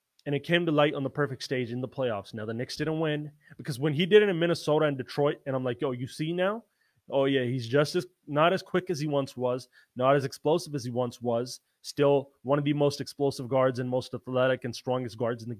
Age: 20-39